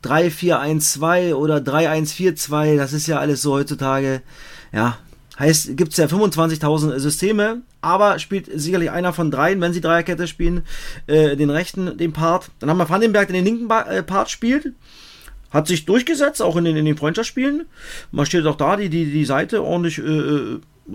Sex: male